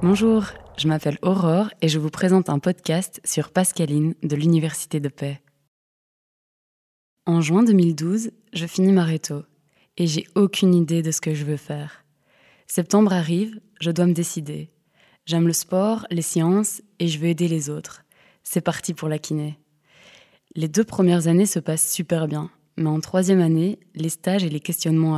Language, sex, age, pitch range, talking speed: French, female, 20-39, 160-185 Hz, 170 wpm